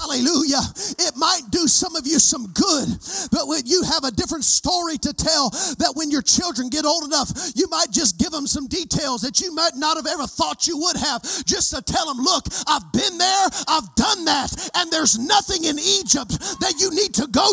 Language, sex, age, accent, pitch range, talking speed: English, male, 40-59, American, 270-360 Hz, 215 wpm